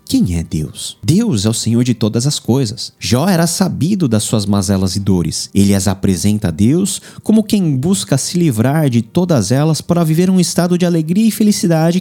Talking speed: 200 wpm